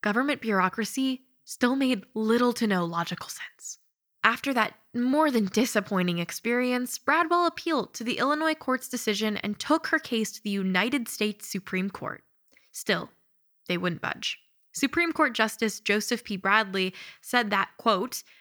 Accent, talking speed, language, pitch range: American, 145 wpm, English, 205-280 Hz